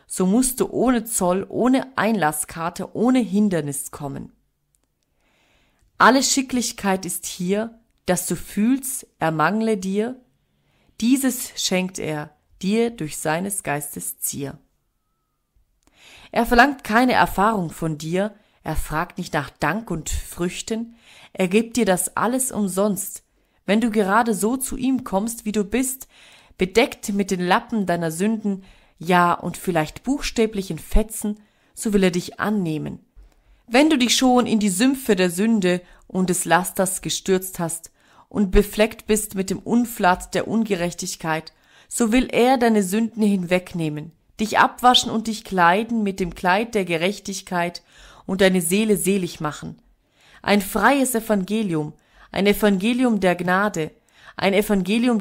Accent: German